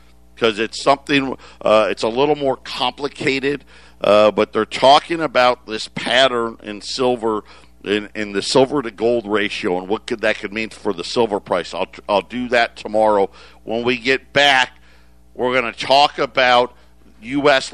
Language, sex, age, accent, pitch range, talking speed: English, male, 50-69, American, 95-125 Hz, 165 wpm